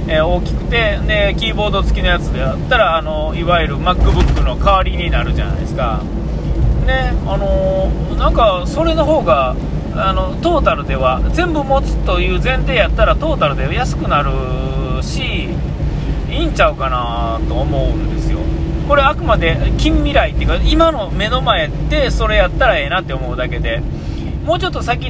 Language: Japanese